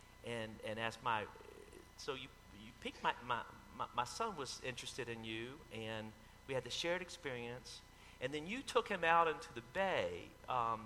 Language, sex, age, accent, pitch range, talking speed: English, male, 40-59, American, 110-150 Hz, 175 wpm